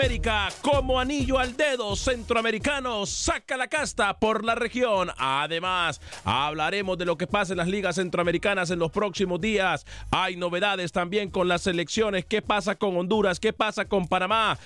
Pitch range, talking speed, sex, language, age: 175-230 Hz, 165 wpm, male, Spanish, 40-59